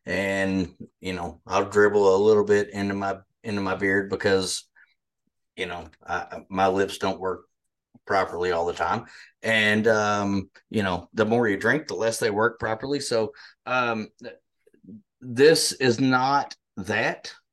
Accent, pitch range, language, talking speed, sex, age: American, 100-120 Hz, English, 150 wpm, male, 30-49